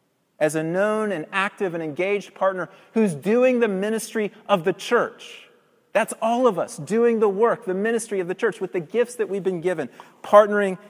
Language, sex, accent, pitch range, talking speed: English, male, American, 175-220 Hz, 195 wpm